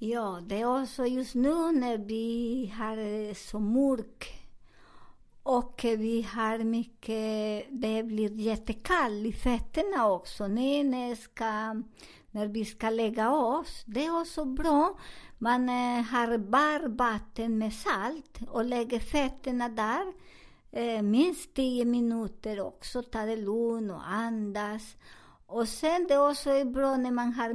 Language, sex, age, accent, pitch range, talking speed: Swedish, male, 50-69, American, 225-265 Hz, 130 wpm